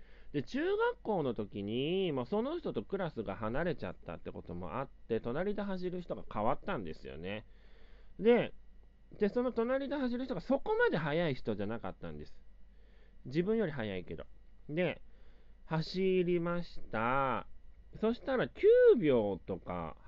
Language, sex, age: Japanese, male, 30-49